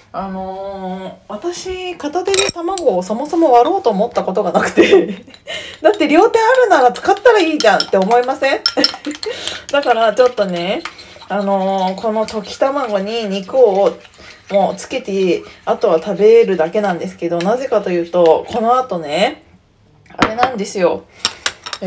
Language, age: Japanese, 20-39